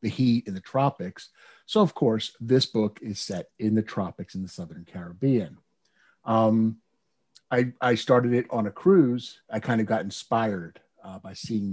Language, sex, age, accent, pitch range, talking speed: English, male, 50-69, American, 105-130 Hz, 180 wpm